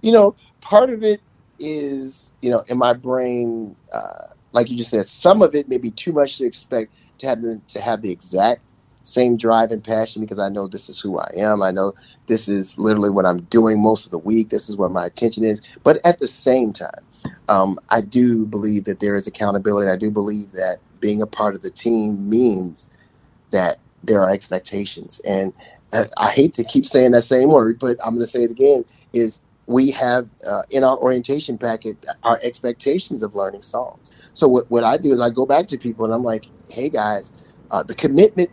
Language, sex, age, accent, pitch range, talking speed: English, male, 30-49, American, 105-130 Hz, 215 wpm